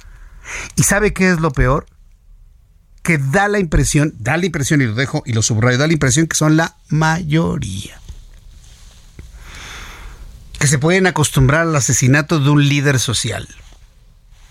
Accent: Mexican